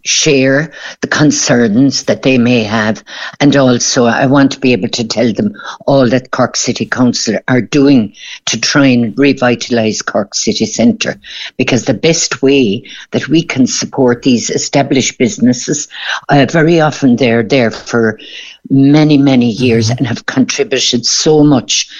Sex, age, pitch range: female, 60-79, 120-140 Hz